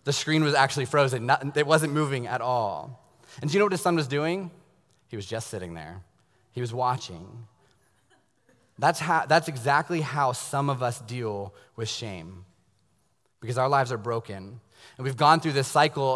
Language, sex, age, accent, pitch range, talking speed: English, male, 20-39, American, 120-150 Hz, 180 wpm